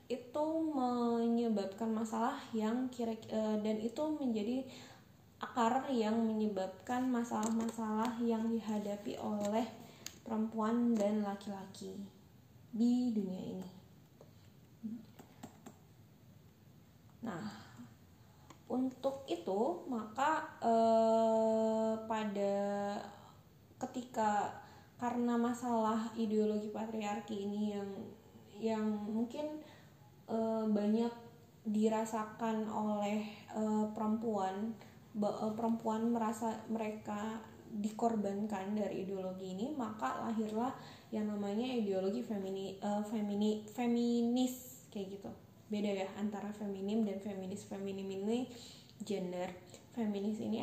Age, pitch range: 20-39, 200-230 Hz